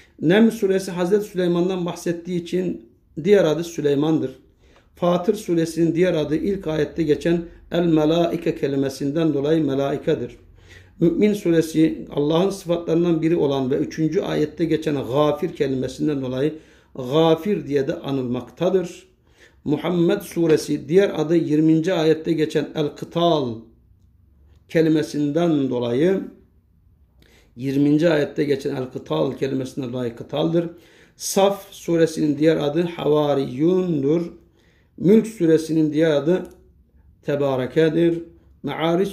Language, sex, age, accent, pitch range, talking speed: Turkish, male, 60-79, native, 135-170 Hz, 100 wpm